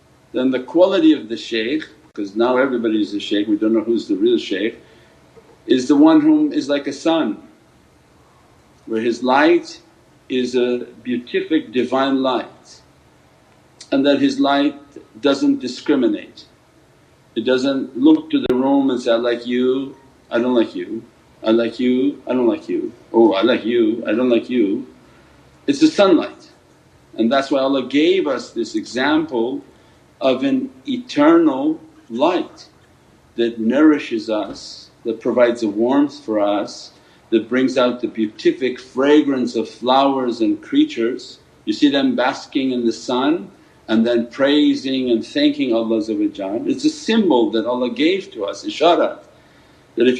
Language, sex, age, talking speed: English, male, 50-69, 155 wpm